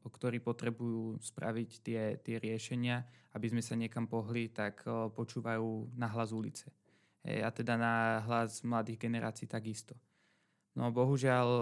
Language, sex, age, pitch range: Slovak, male, 20-39, 115-120 Hz